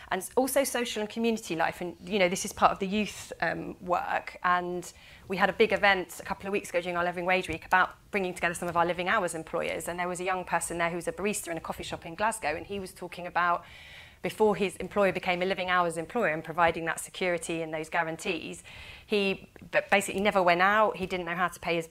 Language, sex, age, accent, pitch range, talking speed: English, female, 30-49, British, 170-200 Hz, 250 wpm